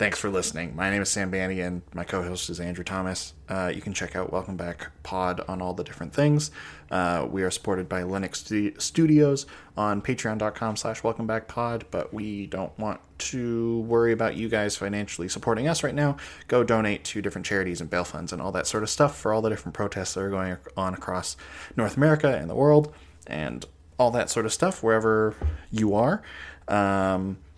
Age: 20-39